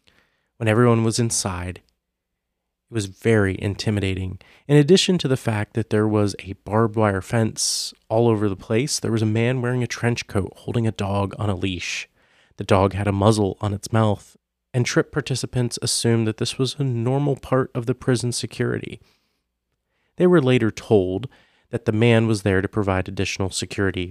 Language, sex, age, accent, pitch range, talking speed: English, male, 30-49, American, 100-120 Hz, 180 wpm